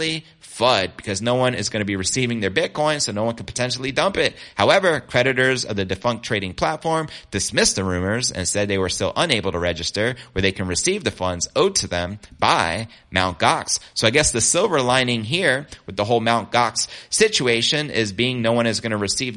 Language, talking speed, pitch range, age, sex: English, 215 wpm, 100-130 Hz, 30-49, male